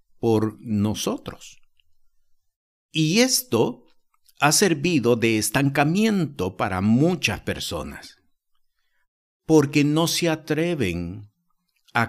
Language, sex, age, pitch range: Spanish, male, 50-69, 105-155 Hz